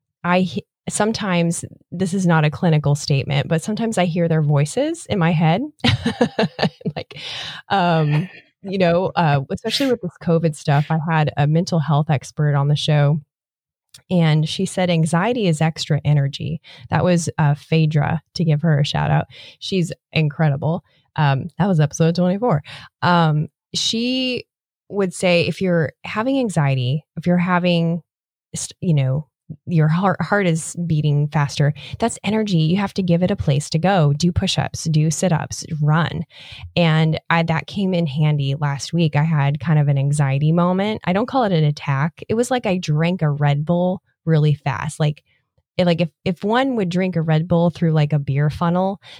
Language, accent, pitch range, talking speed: English, American, 150-180 Hz, 175 wpm